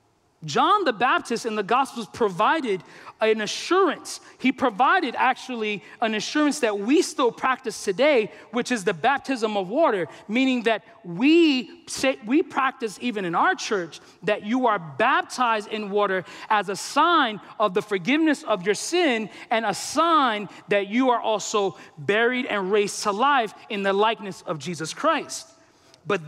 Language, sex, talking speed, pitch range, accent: English, male, 160 wpm, 200-270 Hz, American